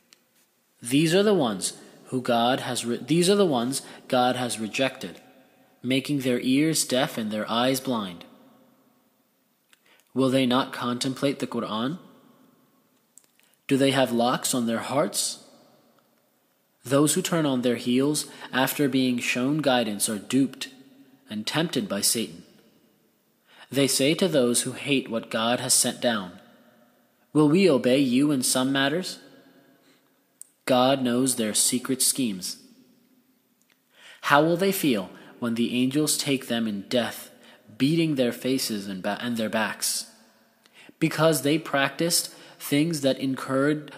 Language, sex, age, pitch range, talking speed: English, male, 20-39, 125-160 Hz, 135 wpm